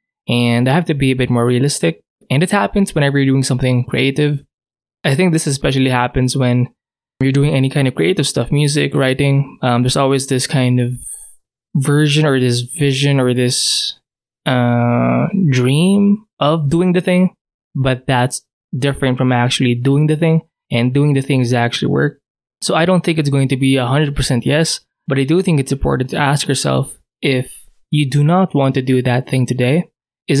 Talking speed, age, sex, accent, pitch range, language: 185 wpm, 20-39, male, Filipino, 125-150 Hz, English